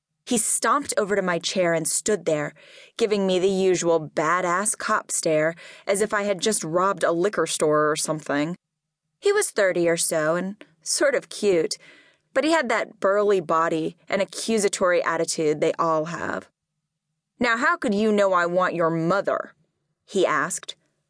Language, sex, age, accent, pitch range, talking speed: English, female, 10-29, American, 165-225 Hz, 170 wpm